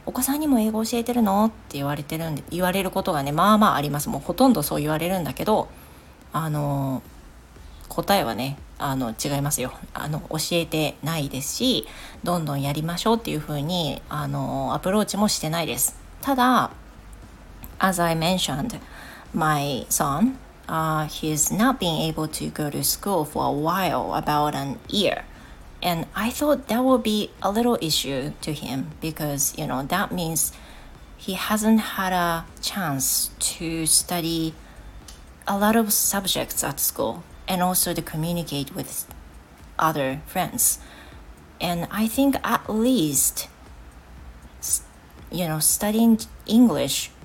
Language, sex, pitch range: Japanese, female, 135-195 Hz